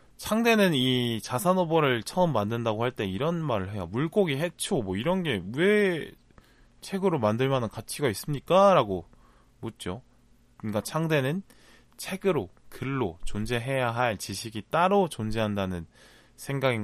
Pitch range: 105-150 Hz